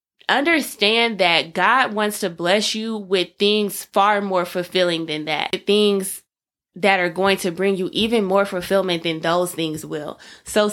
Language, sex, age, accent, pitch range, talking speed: English, female, 20-39, American, 175-230 Hz, 160 wpm